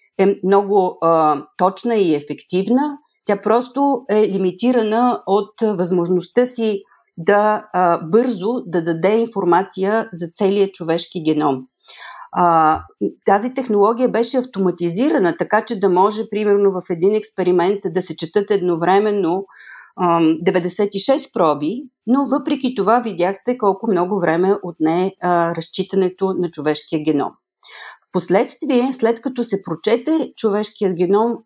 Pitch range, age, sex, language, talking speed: 180-230 Hz, 40-59, female, Bulgarian, 120 wpm